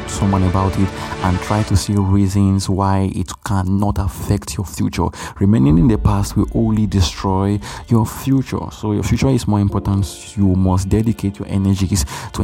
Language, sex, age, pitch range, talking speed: English, male, 20-39, 95-105 Hz, 170 wpm